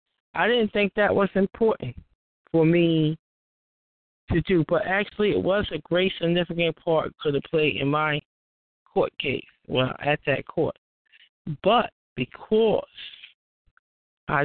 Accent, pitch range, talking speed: American, 140-180 Hz, 135 wpm